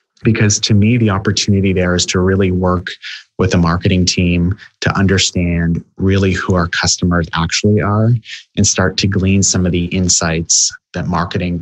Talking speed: 165 wpm